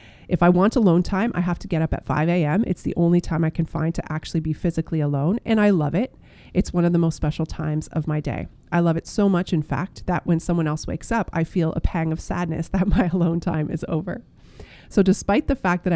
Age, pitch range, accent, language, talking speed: 30-49, 155-185 Hz, American, English, 260 wpm